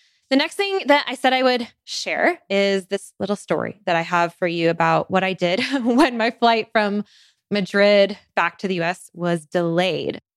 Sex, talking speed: female, 190 wpm